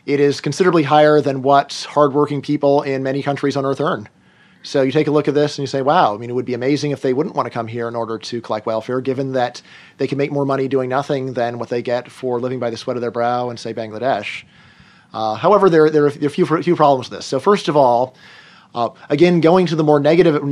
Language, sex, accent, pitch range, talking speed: English, male, American, 130-150 Hz, 265 wpm